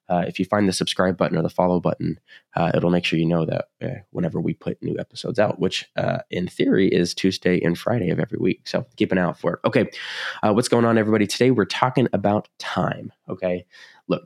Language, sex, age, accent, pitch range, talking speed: English, male, 20-39, American, 85-95 Hz, 235 wpm